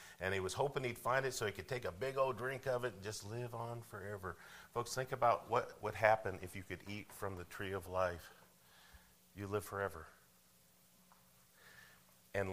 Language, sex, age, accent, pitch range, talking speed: English, male, 50-69, American, 90-110 Hz, 195 wpm